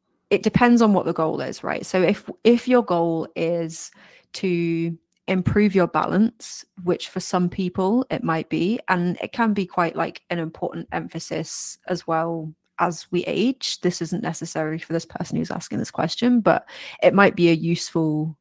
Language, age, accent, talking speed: English, 30-49, British, 180 wpm